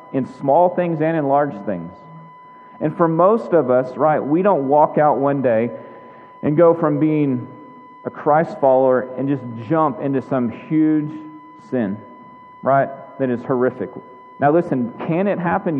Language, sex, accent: English, male, American